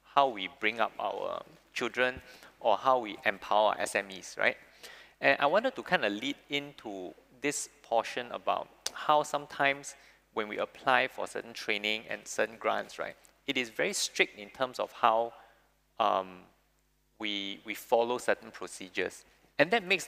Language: English